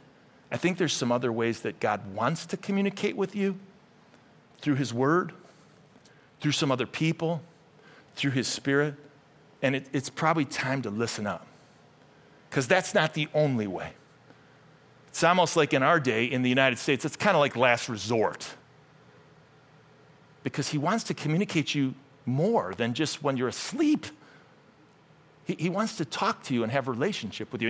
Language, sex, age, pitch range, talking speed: English, male, 50-69, 140-200 Hz, 165 wpm